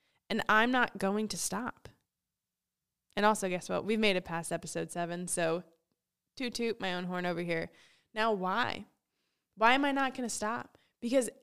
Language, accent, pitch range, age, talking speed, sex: English, American, 185-230 Hz, 10-29, 175 wpm, female